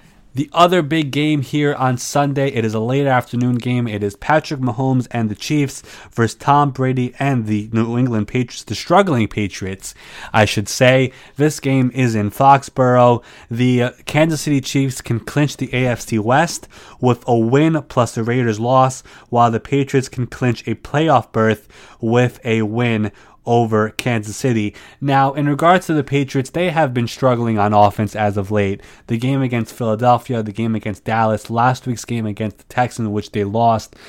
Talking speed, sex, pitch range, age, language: 180 wpm, male, 115-140 Hz, 20-39, English